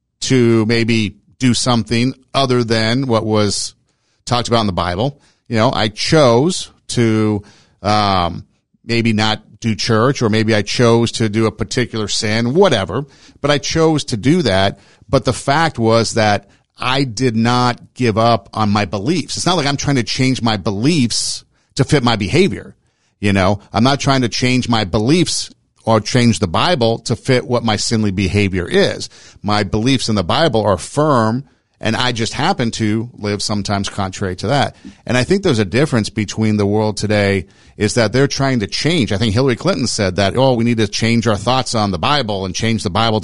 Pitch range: 100-125 Hz